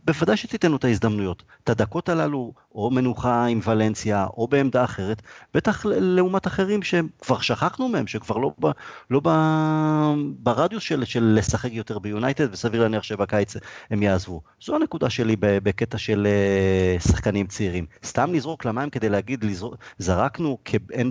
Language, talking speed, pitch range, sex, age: Hebrew, 150 wpm, 110-155 Hz, male, 30-49